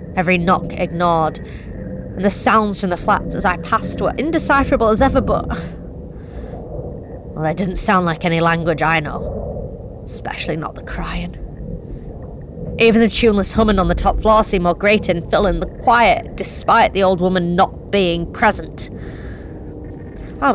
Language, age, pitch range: English, 30-49, 170-220 Hz